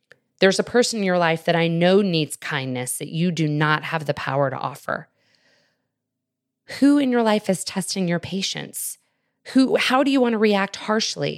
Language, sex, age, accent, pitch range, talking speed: English, female, 20-39, American, 140-170 Hz, 190 wpm